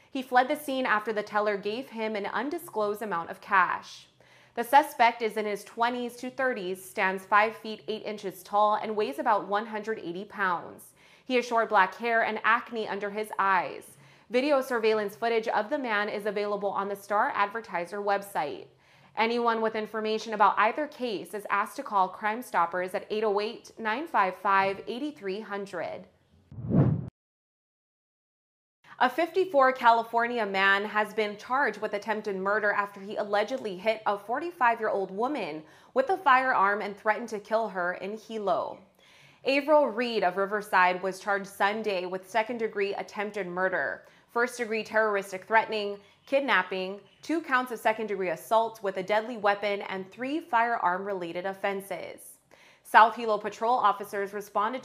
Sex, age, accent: female, 20-39, American